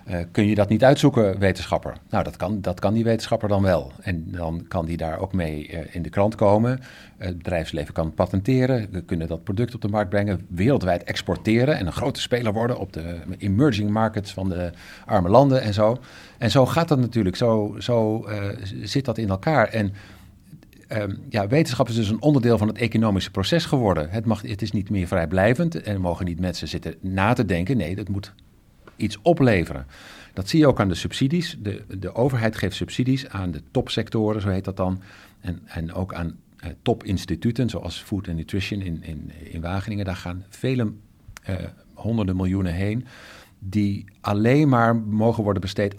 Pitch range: 95-120 Hz